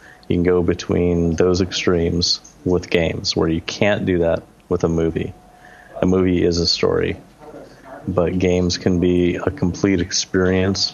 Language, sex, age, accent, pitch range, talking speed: English, male, 30-49, American, 85-95 Hz, 155 wpm